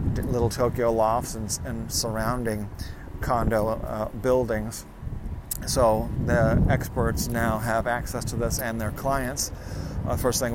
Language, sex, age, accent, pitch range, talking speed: English, male, 40-59, American, 100-120 Hz, 130 wpm